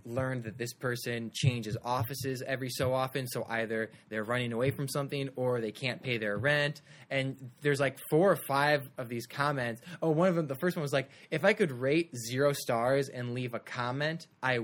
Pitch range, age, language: 115-145 Hz, 20-39, English